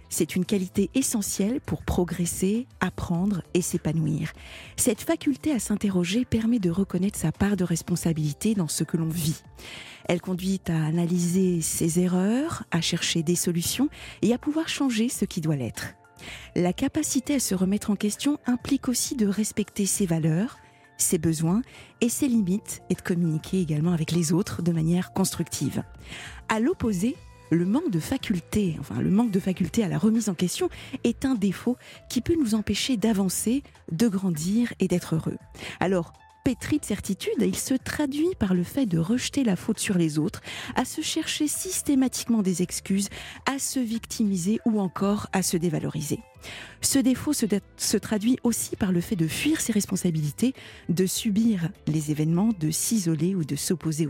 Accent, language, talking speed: French, French, 170 wpm